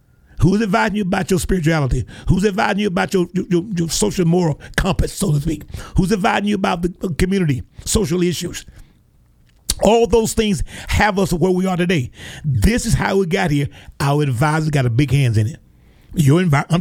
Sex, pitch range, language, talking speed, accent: male, 140-195 Hz, English, 185 wpm, American